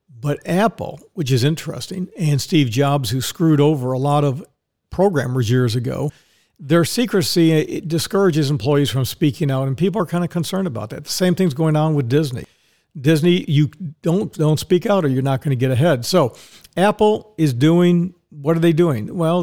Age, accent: 50-69, American